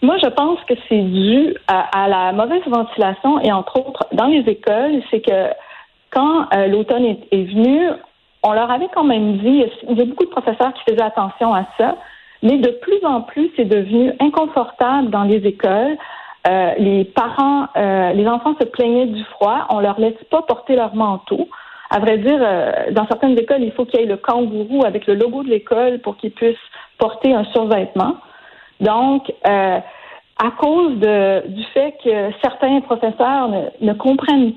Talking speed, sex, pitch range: 185 wpm, female, 215-280 Hz